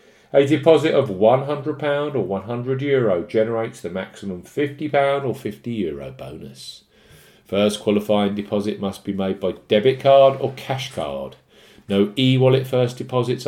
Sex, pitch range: male, 100-135 Hz